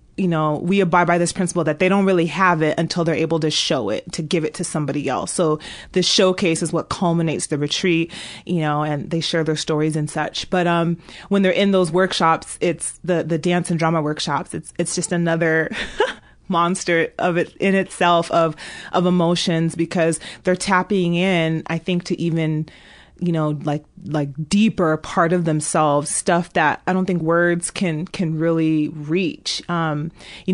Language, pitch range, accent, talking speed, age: English, 160-180 Hz, American, 190 wpm, 30-49